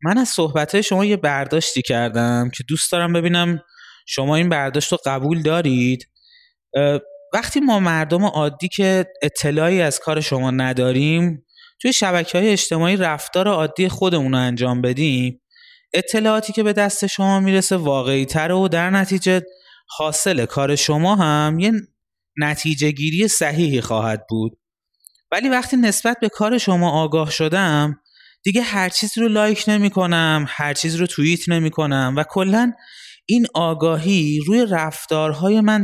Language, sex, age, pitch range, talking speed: Persian, male, 20-39, 140-195 Hz, 140 wpm